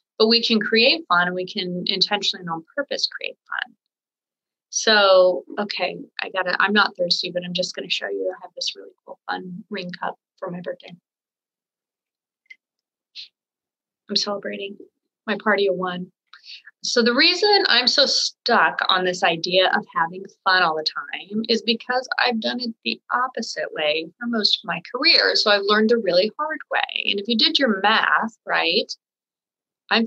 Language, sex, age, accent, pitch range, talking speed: English, female, 30-49, American, 190-255 Hz, 180 wpm